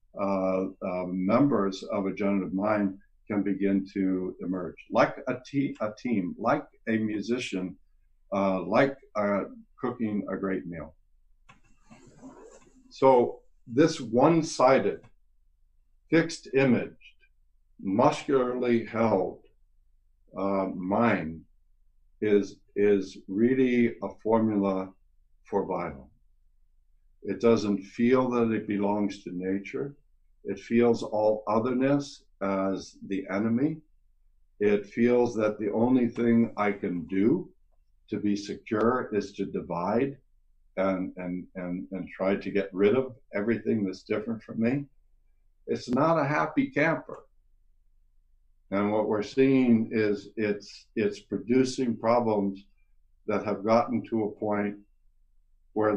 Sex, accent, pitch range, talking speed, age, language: male, American, 95-115 Hz, 115 wpm, 60-79, English